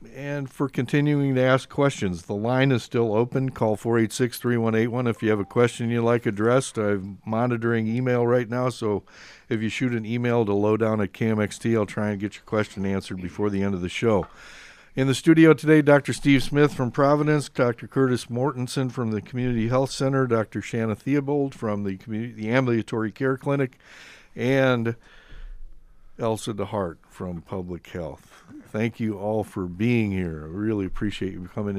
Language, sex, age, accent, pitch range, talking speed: English, male, 60-79, American, 100-130 Hz, 175 wpm